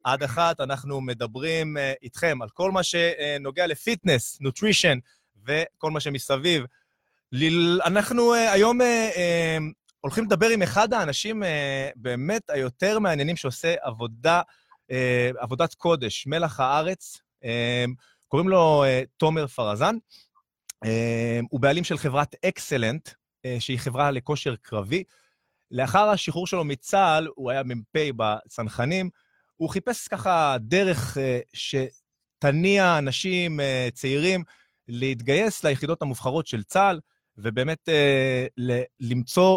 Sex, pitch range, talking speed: male, 125-175 Hz, 100 wpm